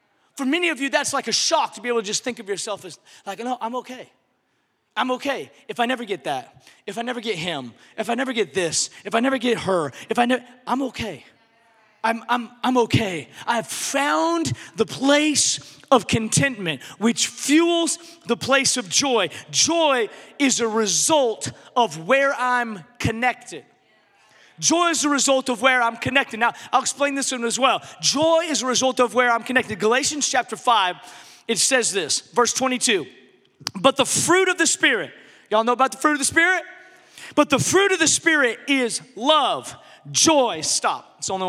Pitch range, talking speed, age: 225-290 Hz, 190 wpm, 30-49